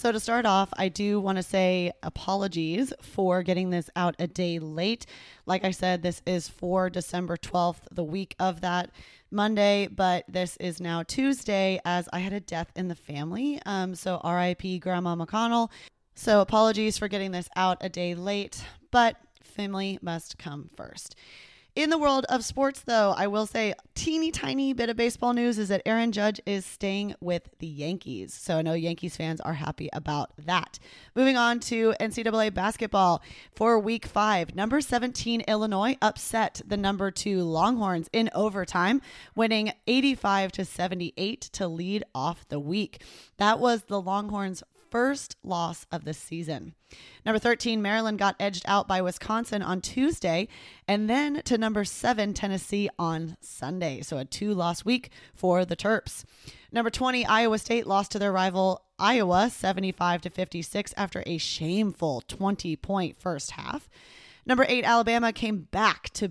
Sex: female